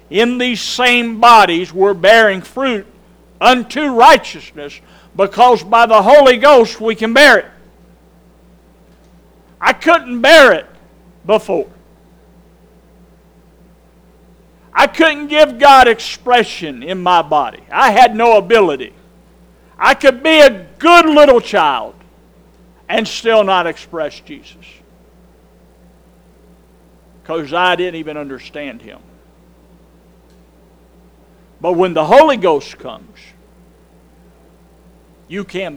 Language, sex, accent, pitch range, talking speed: English, male, American, 175-255 Hz, 100 wpm